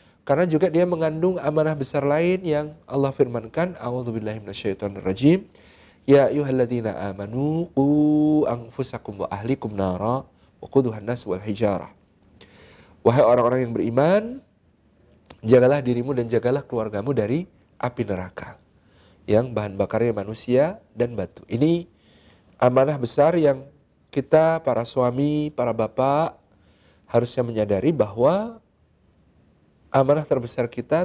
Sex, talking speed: male, 100 wpm